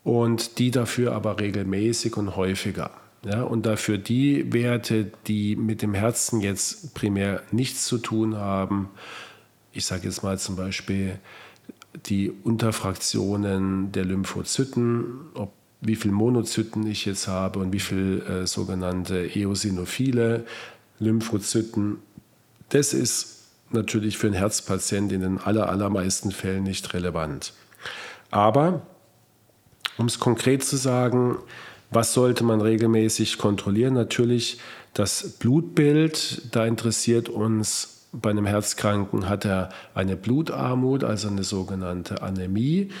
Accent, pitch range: German, 100-120 Hz